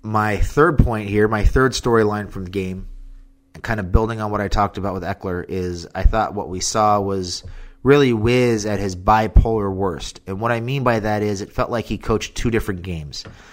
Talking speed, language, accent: 215 wpm, English, American